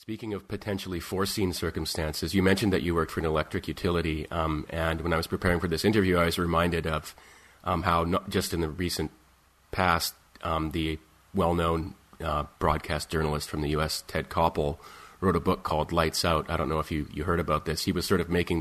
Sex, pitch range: male, 80-90 Hz